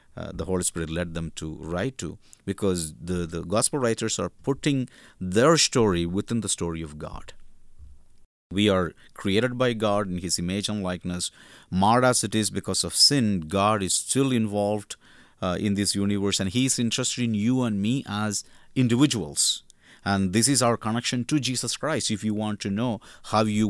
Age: 50-69